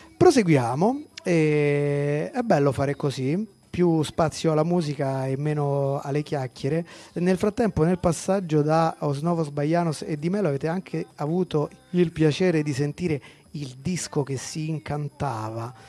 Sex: male